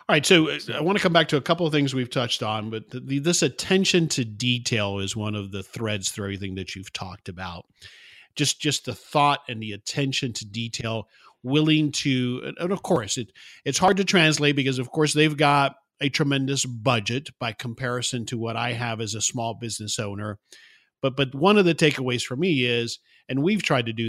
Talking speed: 210 wpm